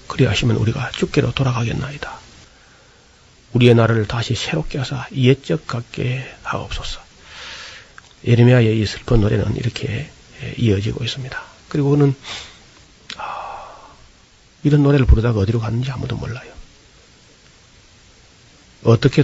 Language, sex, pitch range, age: Korean, male, 110-135 Hz, 40-59